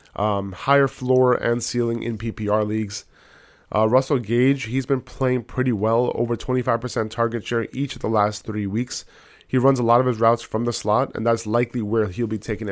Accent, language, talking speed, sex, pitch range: American, English, 205 wpm, male, 105-125 Hz